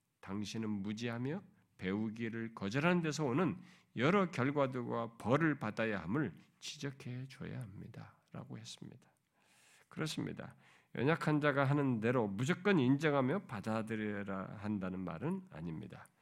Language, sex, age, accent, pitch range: Korean, male, 50-69, native, 105-160 Hz